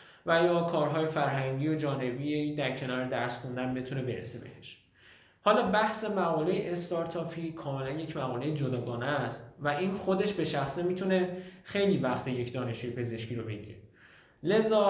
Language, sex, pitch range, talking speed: Persian, male, 130-165 Hz, 145 wpm